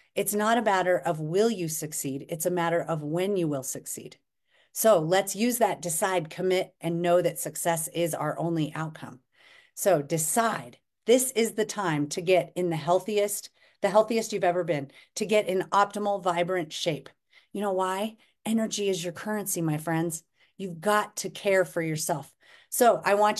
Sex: female